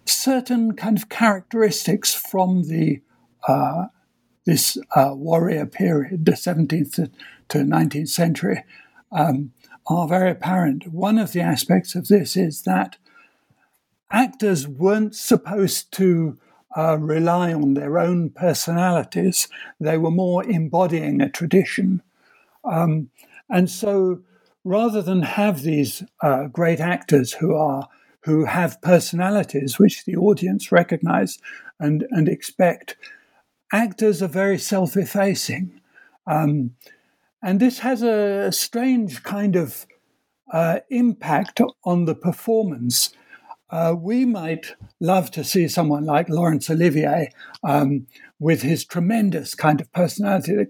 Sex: male